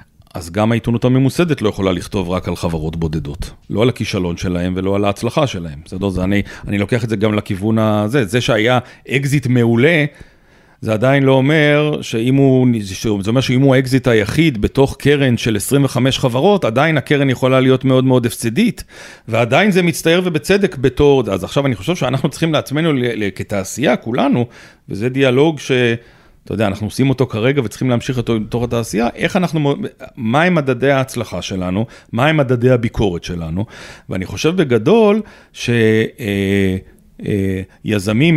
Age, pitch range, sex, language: 40-59, 105-135 Hz, male, Hebrew